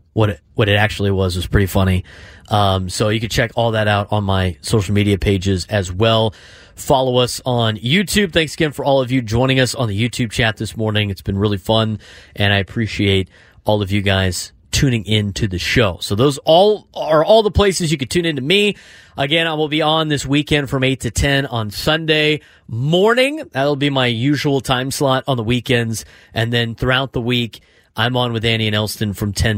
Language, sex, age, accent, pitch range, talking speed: English, male, 30-49, American, 105-140 Hz, 220 wpm